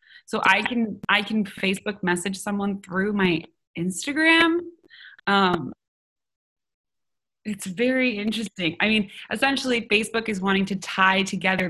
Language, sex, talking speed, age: English, female, 125 wpm, 20-39